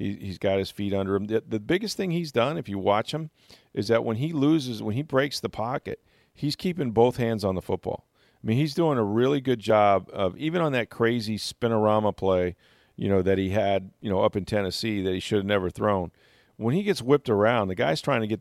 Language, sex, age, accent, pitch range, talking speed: English, male, 40-59, American, 95-115 Hz, 240 wpm